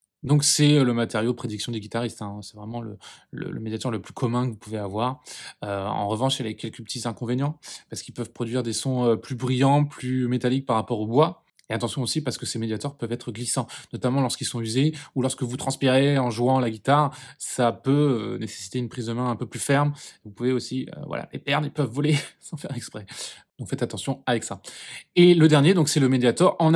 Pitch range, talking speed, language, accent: 115-145 Hz, 230 wpm, French, French